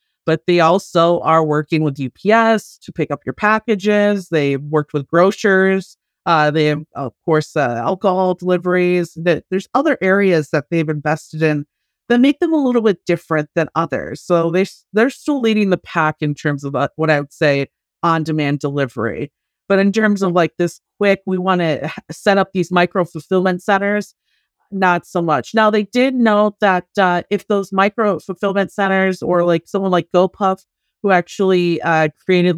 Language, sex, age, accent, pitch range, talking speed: English, female, 30-49, American, 160-195 Hz, 175 wpm